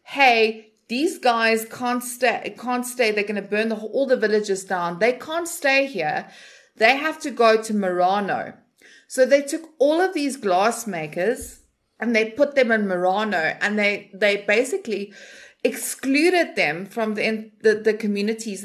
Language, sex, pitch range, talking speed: English, female, 200-255 Hz, 150 wpm